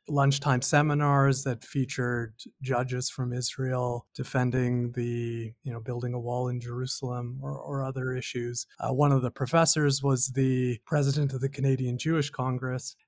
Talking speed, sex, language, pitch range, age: 150 wpm, male, English, 125-140 Hz, 30-49